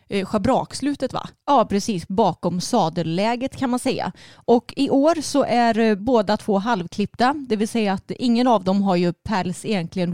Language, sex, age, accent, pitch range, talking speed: Swedish, female, 30-49, native, 180-230 Hz, 165 wpm